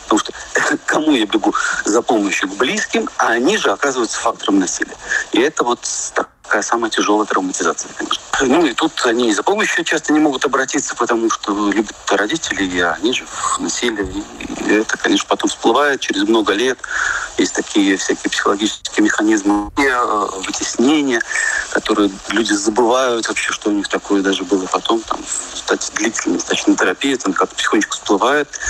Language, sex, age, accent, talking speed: Russian, male, 40-59, native, 155 wpm